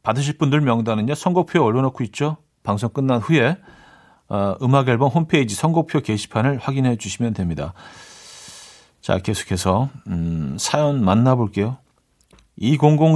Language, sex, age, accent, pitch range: Korean, male, 40-59, native, 115-155 Hz